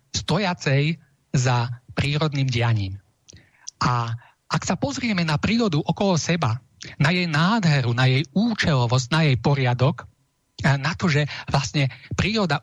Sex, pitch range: male, 130-175 Hz